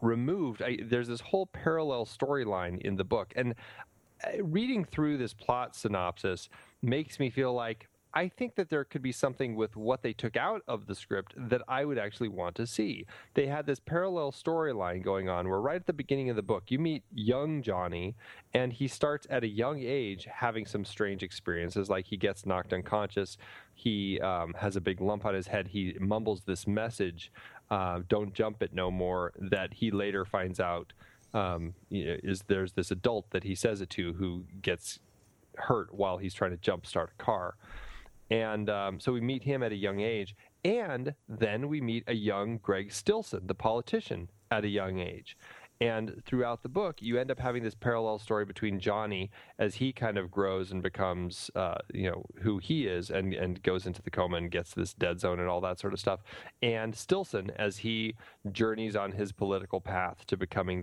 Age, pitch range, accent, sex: 30-49, 95-125 Hz, American, male